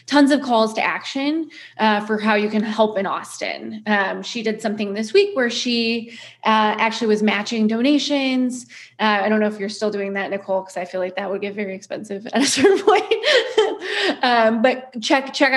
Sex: female